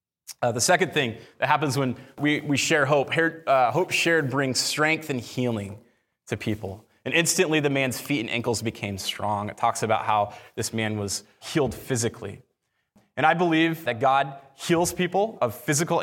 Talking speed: 175 wpm